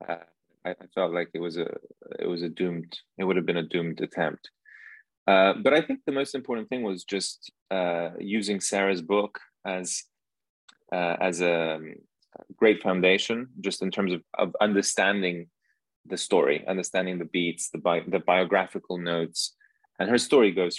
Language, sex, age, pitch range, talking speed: English, male, 20-39, 85-100 Hz, 165 wpm